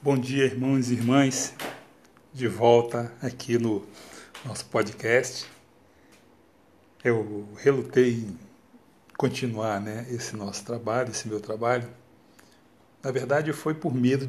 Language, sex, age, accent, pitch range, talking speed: Portuguese, male, 60-79, Brazilian, 115-130 Hz, 115 wpm